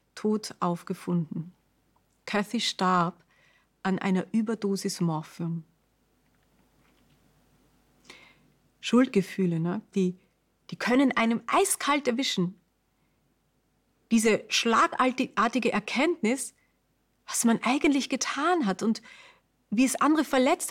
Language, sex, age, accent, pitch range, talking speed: German, female, 30-49, German, 190-250 Hz, 80 wpm